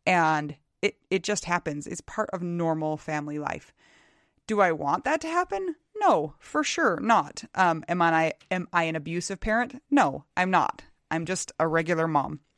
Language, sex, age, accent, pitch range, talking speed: English, female, 30-49, American, 155-200 Hz, 175 wpm